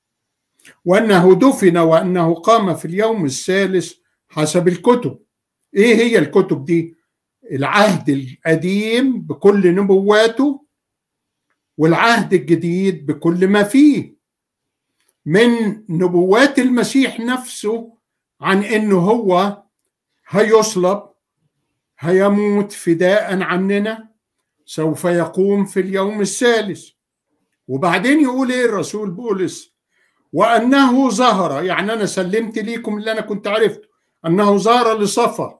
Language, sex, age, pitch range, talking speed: Arabic, male, 50-69, 175-225 Hz, 95 wpm